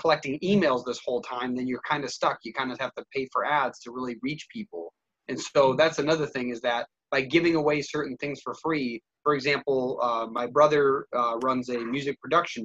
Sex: male